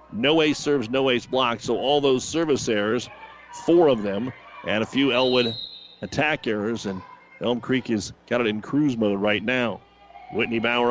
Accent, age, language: American, 40-59, English